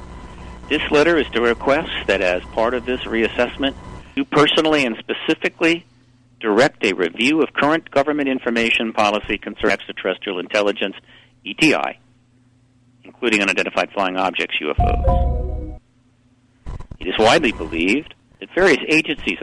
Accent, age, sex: American, 60-79, male